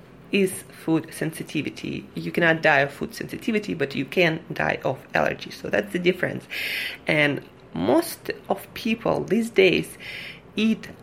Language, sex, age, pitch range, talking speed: English, female, 20-39, 155-185 Hz, 140 wpm